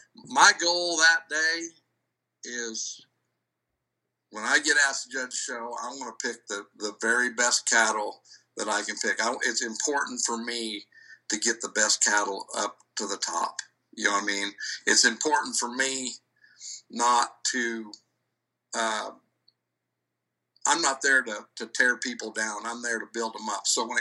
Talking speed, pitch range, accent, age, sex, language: 165 wpm, 110-135 Hz, American, 60-79, male, English